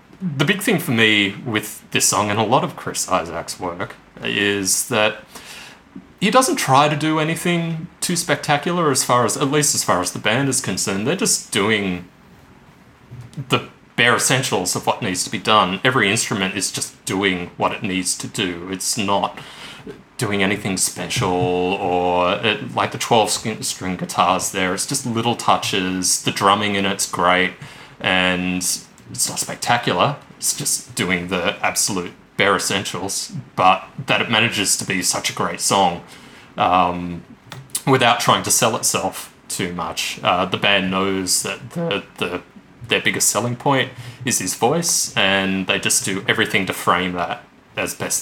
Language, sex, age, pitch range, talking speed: English, male, 30-49, 95-140 Hz, 165 wpm